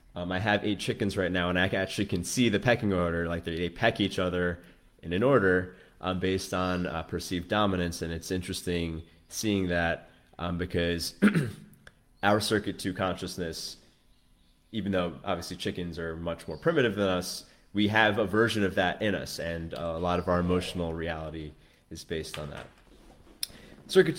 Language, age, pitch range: English, 20-39, 85-105 Hz